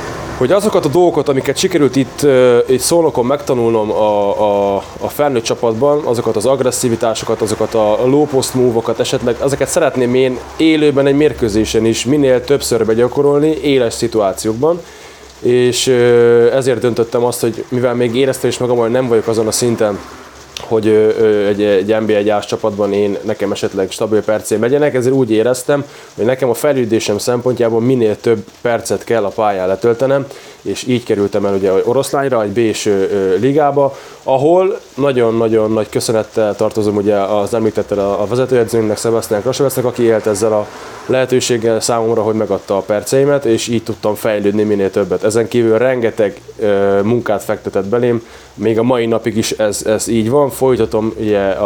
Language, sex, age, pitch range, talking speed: Hungarian, male, 20-39, 105-130 Hz, 155 wpm